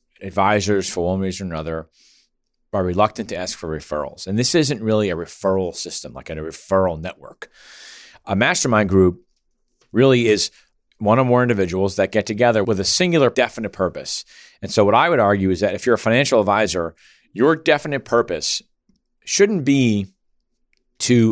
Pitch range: 95-130 Hz